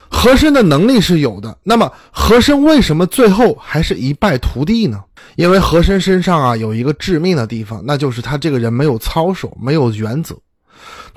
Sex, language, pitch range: male, Chinese, 130-205 Hz